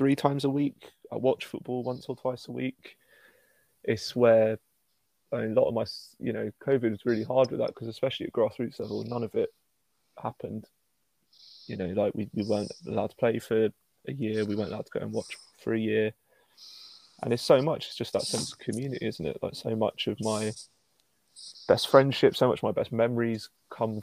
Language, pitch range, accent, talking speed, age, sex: English, 110-125 Hz, British, 205 wpm, 20-39, male